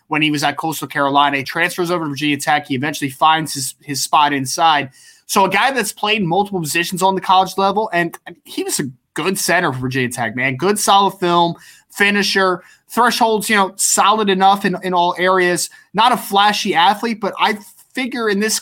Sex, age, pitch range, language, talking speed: male, 20-39, 160-200 Hz, English, 200 wpm